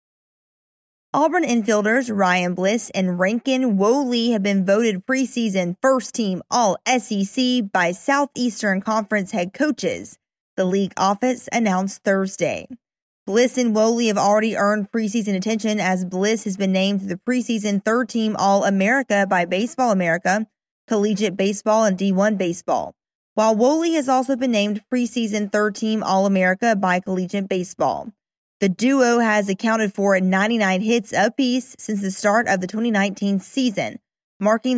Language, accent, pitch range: English, American, 195-245 Hz